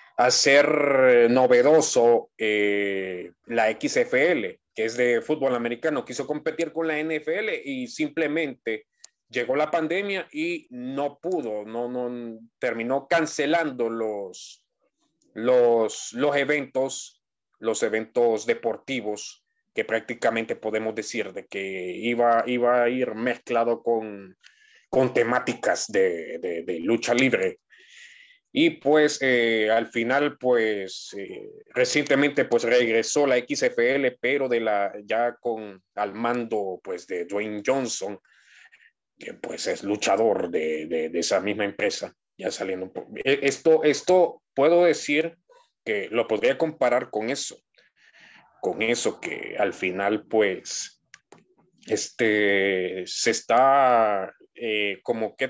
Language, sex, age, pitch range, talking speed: English, male, 30-49, 110-170 Hz, 120 wpm